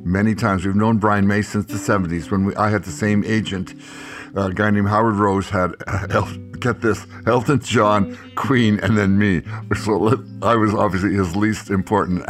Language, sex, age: English, male, 60-79